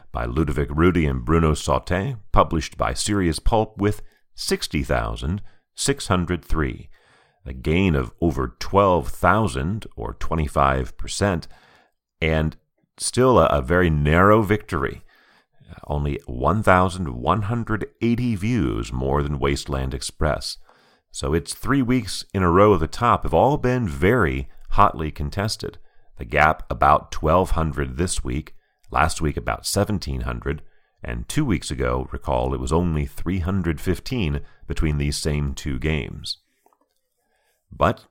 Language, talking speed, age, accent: English, 130 wpm, 40-59, American